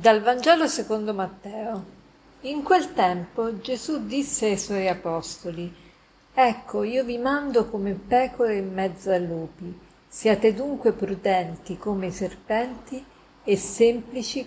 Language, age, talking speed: Italian, 50-69, 125 wpm